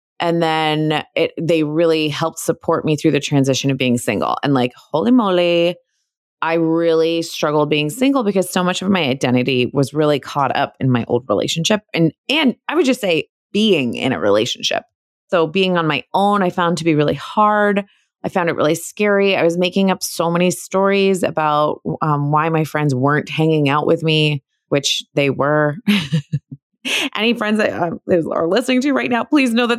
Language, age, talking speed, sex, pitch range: English, 20-39, 185 wpm, female, 155-205 Hz